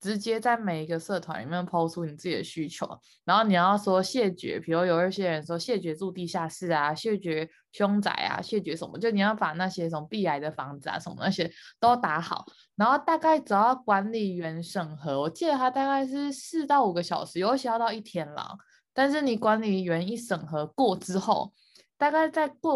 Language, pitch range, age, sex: Chinese, 170-230 Hz, 20-39, female